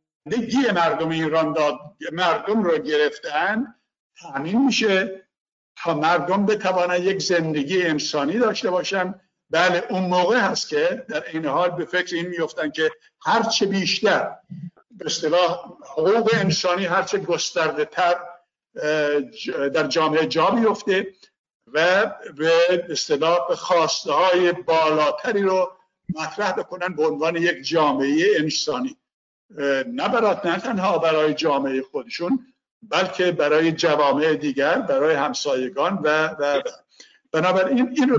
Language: Persian